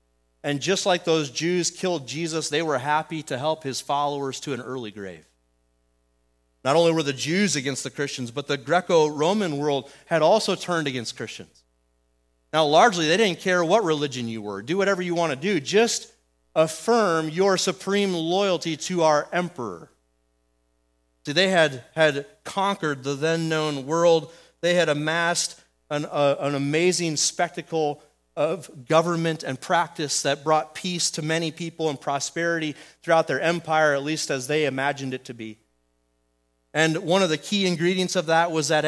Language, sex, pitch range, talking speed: English, male, 125-170 Hz, 165 wpm